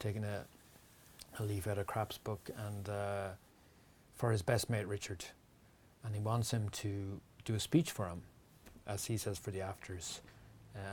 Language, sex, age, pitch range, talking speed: English, male, 30-49, 100-140 Hz, 170 wpm